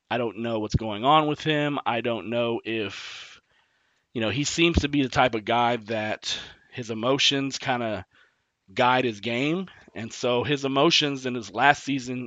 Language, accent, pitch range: English, American, 115-140 Hz